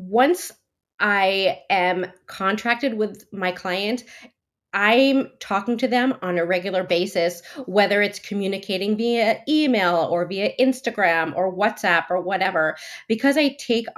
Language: English